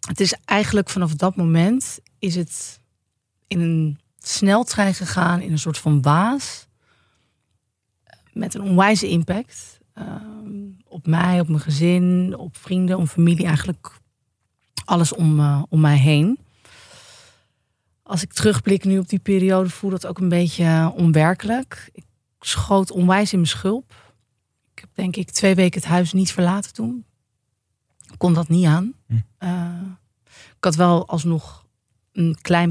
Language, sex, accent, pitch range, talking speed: Dutch, female, Dutch, 155-185 Hz, 145 wpm